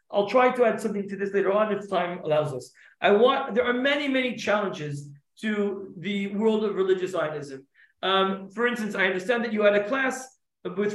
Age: 40-59